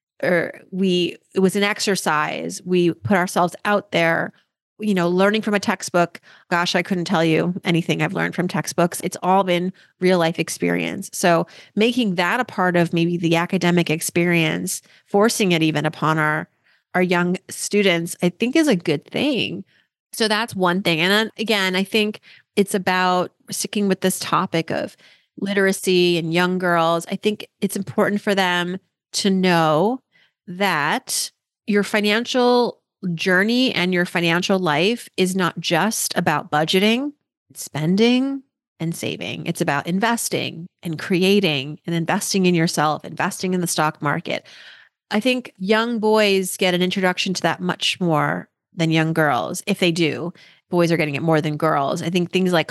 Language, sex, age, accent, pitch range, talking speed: English, female, 30-49, American, 170-205 Hz, 160 wpm